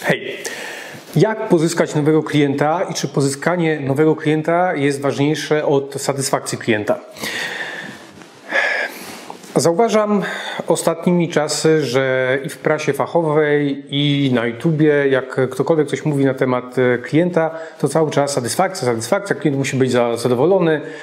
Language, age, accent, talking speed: Polish, 40-59, native, 120 wpm